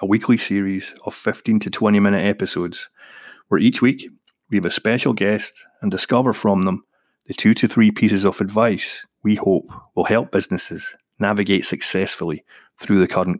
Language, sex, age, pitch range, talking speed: English, male, 30-49, 95-110 Hz, 170 wpm